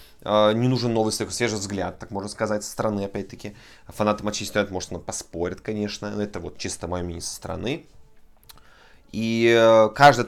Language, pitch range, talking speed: Russian, 95-115 Hz, 160 wpm